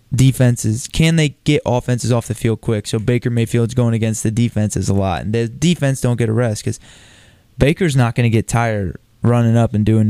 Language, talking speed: English, 215 wpm